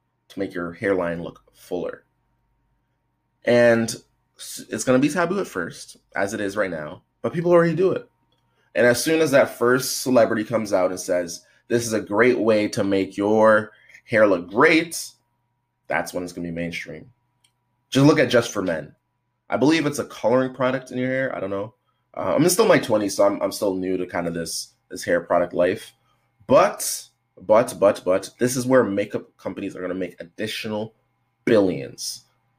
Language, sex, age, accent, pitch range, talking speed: English, male, 20-39, American, 95-130 Hz, 195 wpm